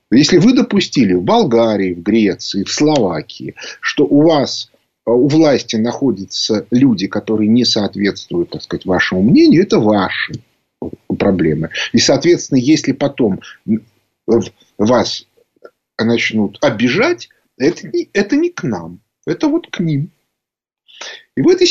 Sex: male